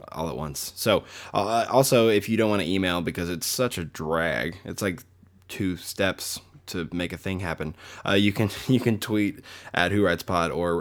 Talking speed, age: 205 wpm, 20-39